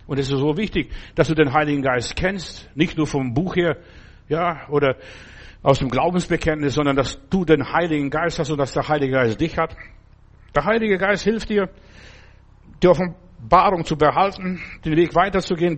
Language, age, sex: German, 60-79, male